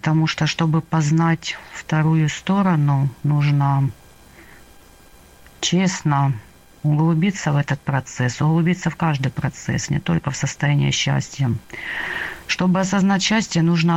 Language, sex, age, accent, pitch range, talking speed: Russian, female, 40-59, native, 135-165 Hz, 105 wpm